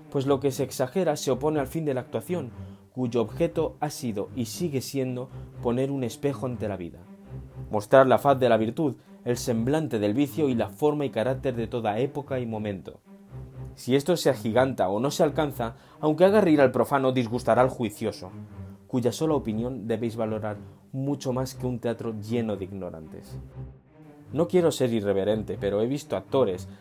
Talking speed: 185 wpm